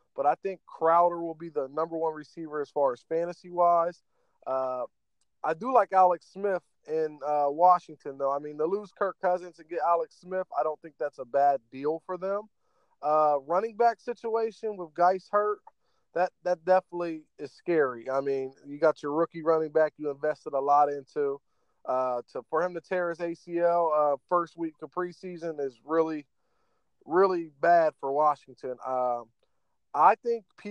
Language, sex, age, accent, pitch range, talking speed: English, male, 20-39, American, 150-185 Hz, 180 wpm